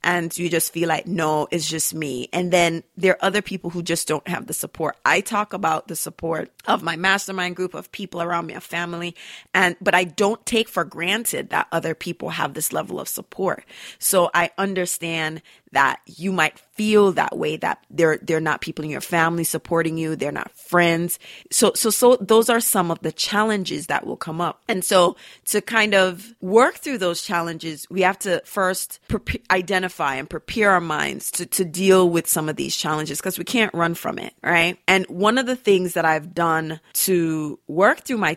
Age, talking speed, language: 30-49, 205 wpm, English